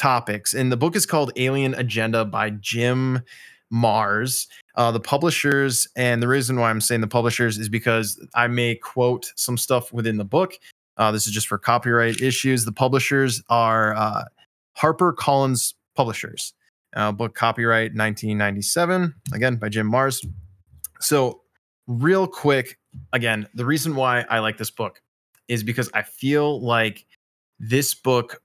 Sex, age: male, 20-39